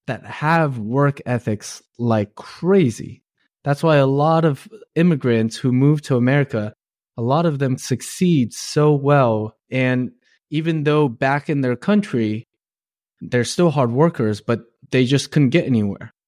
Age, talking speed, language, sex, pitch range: 20-39, 145 wpm, English, male, 115-140 Hz